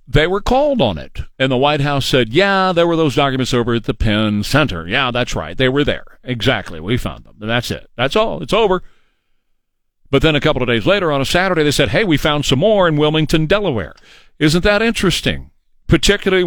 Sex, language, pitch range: male, English, 115-170 Hz